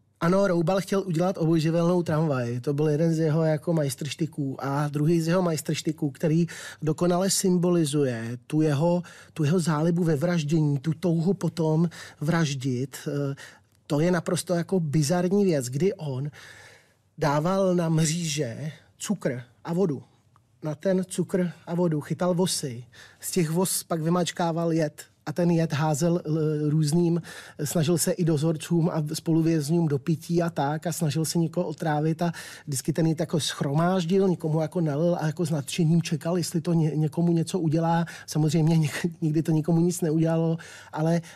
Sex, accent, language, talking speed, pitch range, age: male, native, Czech, 150 wpm, 155-175 Hz, 30-49